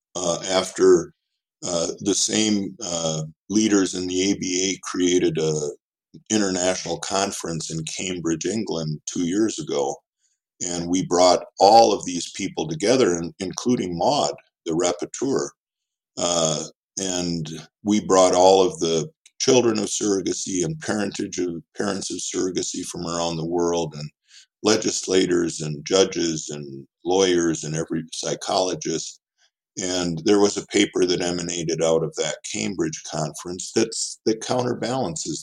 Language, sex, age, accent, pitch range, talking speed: English, male, 50-69, American, 80-105 Hz, 125 wpm